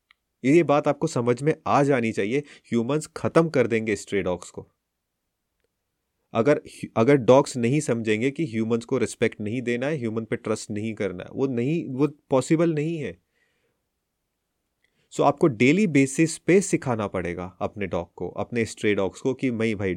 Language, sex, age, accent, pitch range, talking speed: Hindi, male, 30-49, native, 110-145 Hz, 165 wpm